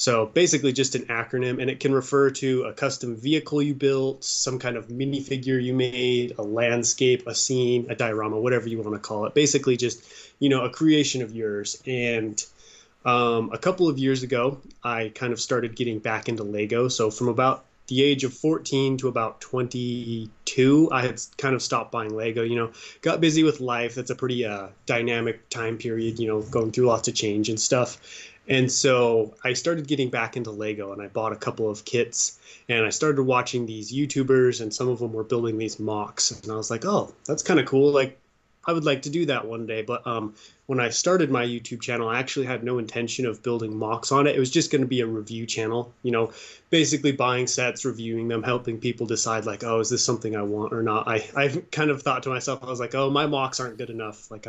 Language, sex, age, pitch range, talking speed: English, male, 20-39, 115-135 Hz, 225 wpm